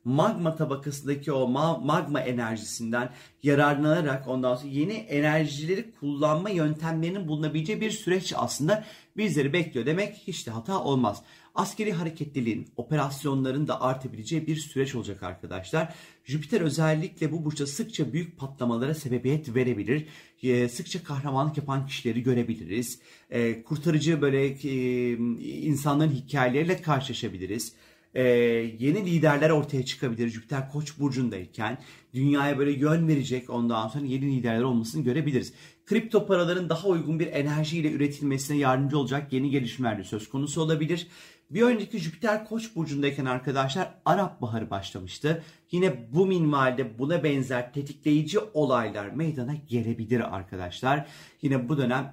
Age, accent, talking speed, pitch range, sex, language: 40-59, native, 120 wpm, 125-160 Hz, male, Turkish